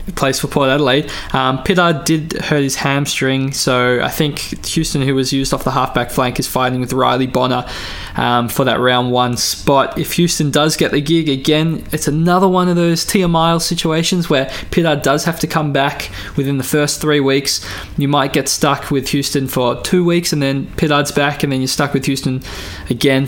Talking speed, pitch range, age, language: 200 wpm, 125-150 Hz, 20-39, English